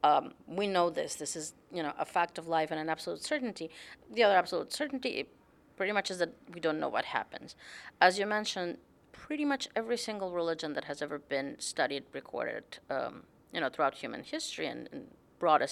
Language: English